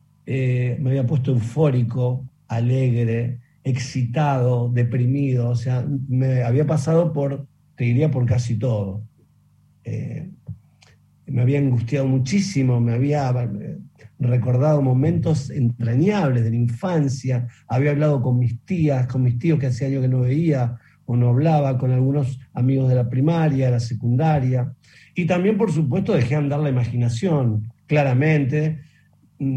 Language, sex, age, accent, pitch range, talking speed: Spanish, male, 50-69, Argentinian, 125-150 Hz, 135 wpm